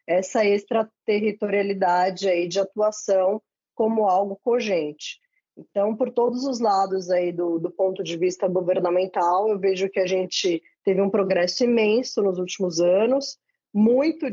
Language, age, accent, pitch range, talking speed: Portuguese, 20-39, Brazilian, 185-225 Hz, 140 wpm